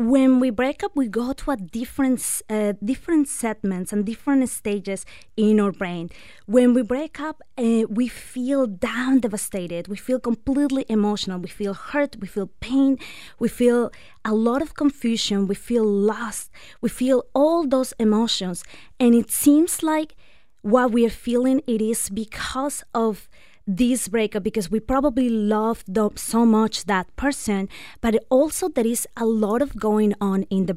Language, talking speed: English, 165 wpm